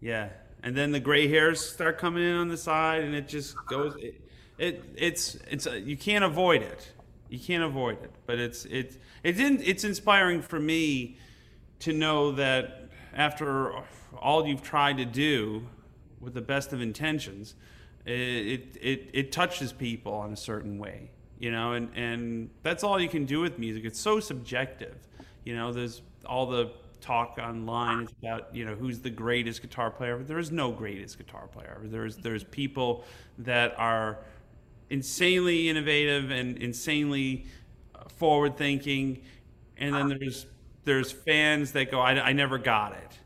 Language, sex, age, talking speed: English, male, 30-49, 170 wpm